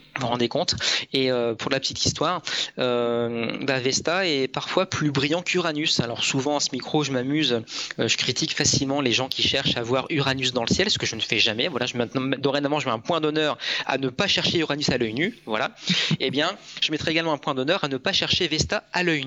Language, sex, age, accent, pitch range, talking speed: French, male, 20-39, French, 120-145 Hz, 245 wpm